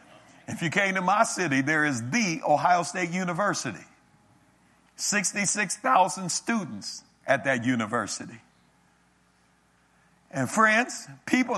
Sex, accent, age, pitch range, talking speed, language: male, American, 50-69, 135-215 Hz, 105 wpm, English